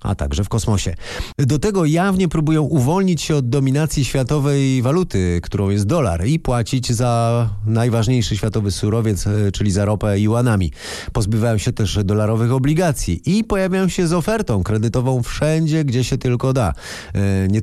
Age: 30-49